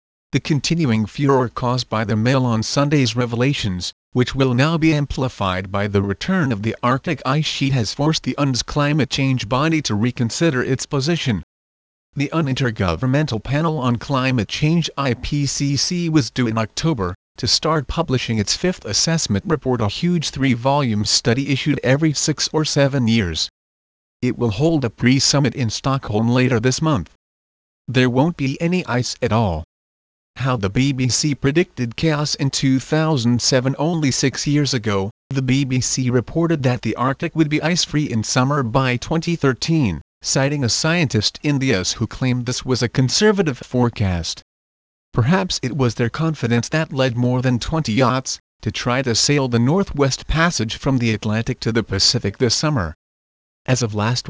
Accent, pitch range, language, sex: American, 115-145 Hz, English, male